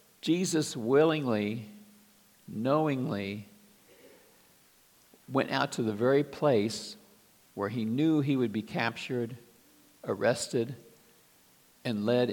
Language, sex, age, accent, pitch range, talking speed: English, male, 60-79, American, 115-150 Hz, 90 wpm